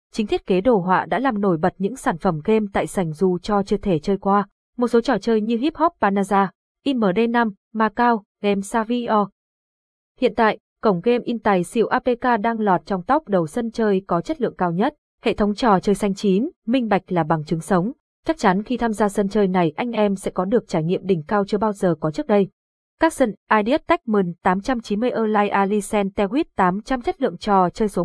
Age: 20-39